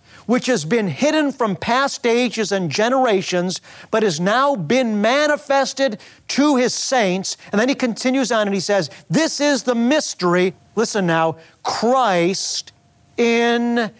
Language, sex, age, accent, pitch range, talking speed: English, male, 50-69, American, 160-225 Hz, 140 wpm